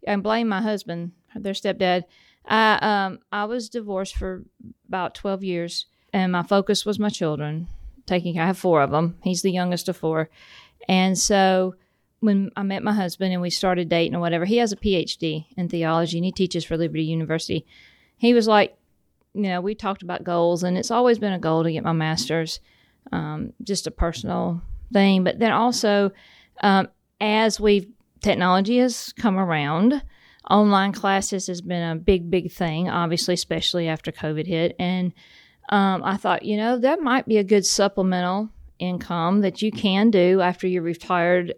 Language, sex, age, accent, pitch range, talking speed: English, female, 50-69, American, 175-210 Hz, 180 wpm